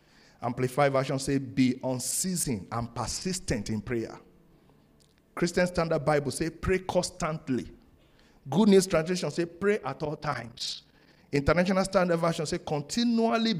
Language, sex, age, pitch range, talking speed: English, male, 50-69, 120-185 Hz, 125 wpm